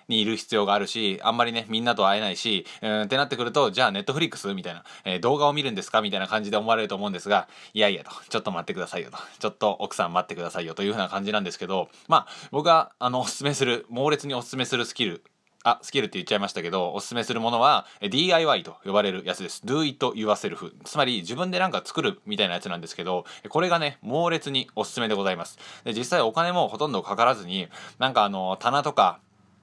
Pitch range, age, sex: 100-145 Hz, 20-39, male